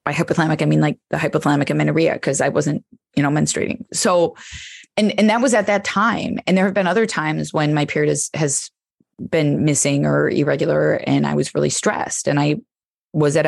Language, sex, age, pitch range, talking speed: English, female, 20-39, 145-200 Hz, 205 wpm